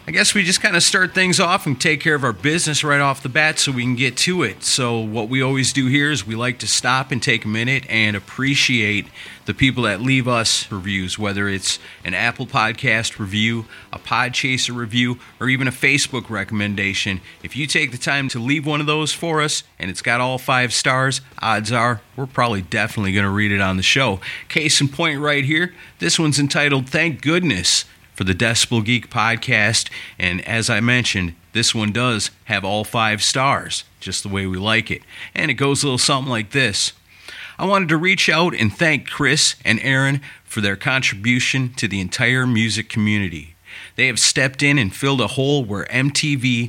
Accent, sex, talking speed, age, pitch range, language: American, male, 205 wpm, 40-59, 105-140 Hz, English